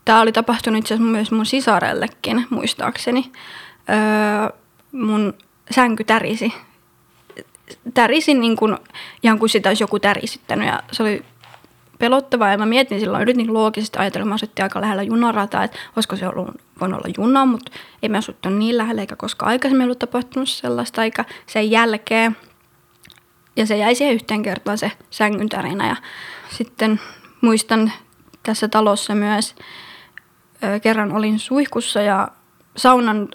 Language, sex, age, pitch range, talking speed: Finnish, female, 20-39, 210-245 Hz, 140 wpm